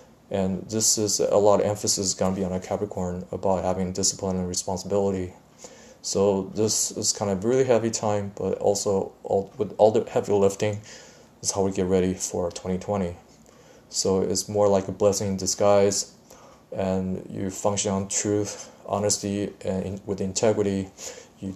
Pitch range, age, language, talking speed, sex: 95-105 Hz, 20-39, English, 160 wpm, male